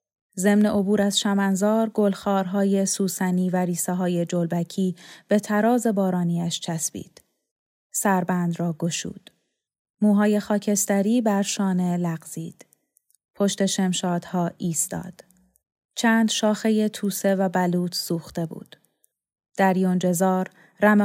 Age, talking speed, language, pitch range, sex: 30-49, 95 wpm, Persian, 175-210 Hz, female